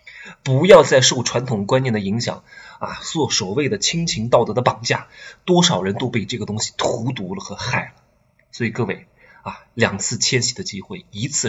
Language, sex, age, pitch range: Chinese, male, 20-39, 105-130 Hz